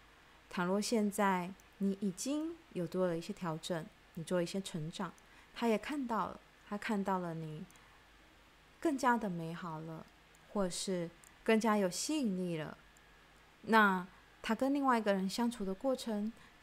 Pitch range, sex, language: 155-210 Hz, female, Chinese